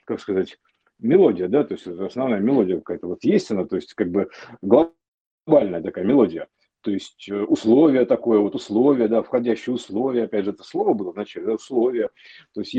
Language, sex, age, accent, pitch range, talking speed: Russian, male, 50-69, native, 110-135 Hz, 175 wpm